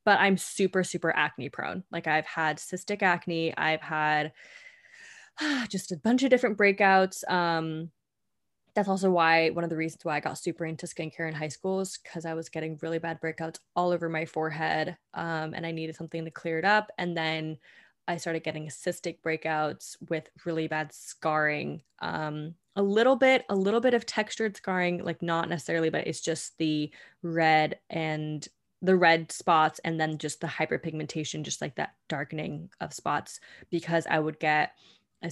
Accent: American